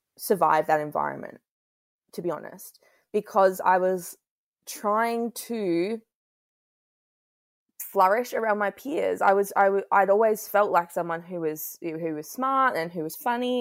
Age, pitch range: 20-39, 165-210 Hz